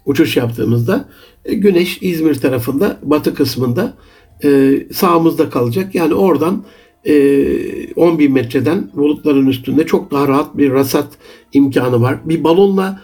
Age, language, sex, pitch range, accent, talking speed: 60-79, Turkish, male, 145-165 Hz, native, 115 wpm